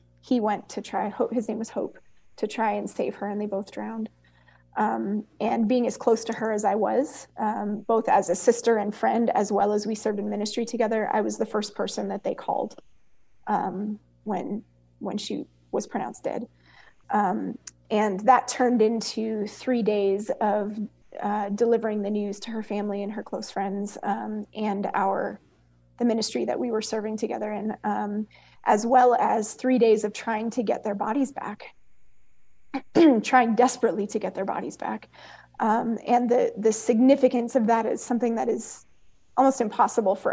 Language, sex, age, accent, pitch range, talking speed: English, female, 30-49, American, 205-240 Hz, 180 wpm